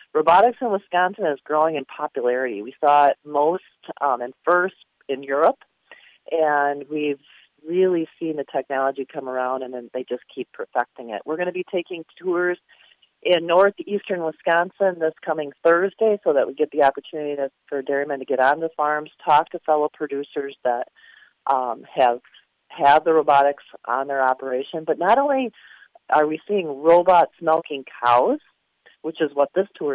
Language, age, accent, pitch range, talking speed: English, 40-59, American, 140-175 Hz, 165 wpm